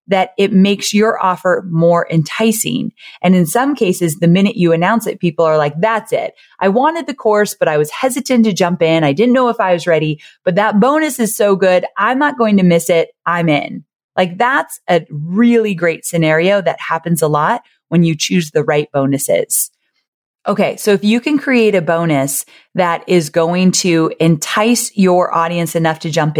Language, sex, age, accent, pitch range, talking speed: English, female, 30-49, American, 160-210 Hz, 200 wpm